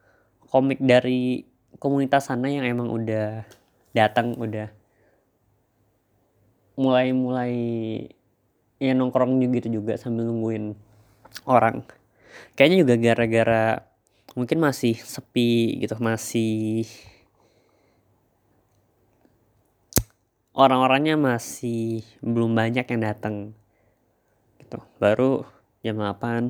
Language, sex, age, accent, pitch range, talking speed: Indonesian, female, 20-39, native, 105-125 Hz, 75 wpm